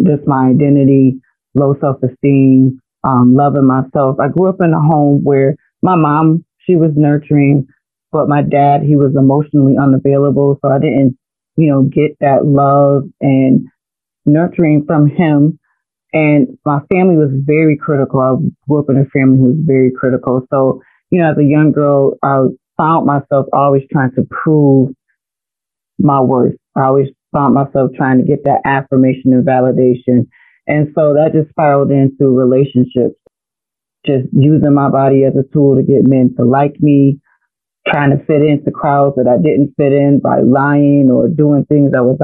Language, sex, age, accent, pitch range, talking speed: English, female, 30-49, American, 135-150 Hz, 170 wpm